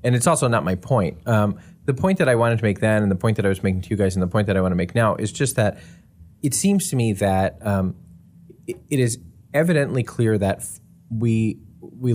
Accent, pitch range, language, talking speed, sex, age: American, 95-115 Hz, English, 255 wpm, male, 20-39